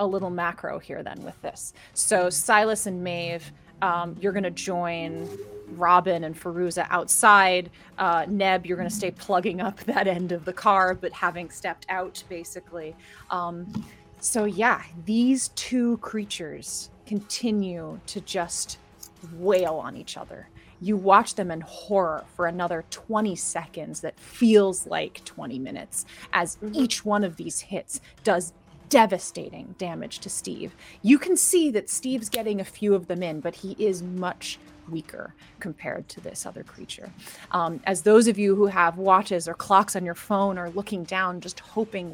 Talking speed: 160 wpm